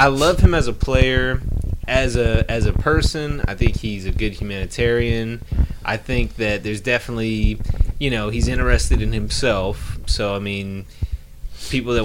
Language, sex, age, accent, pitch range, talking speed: English, male, 20-39, American, 100-135 Hz, 165 wpm